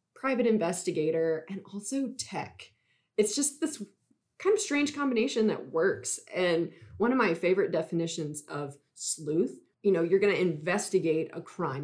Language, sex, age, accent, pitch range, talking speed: English, female, 20-39, American, 155-195 Hz, 150 wpm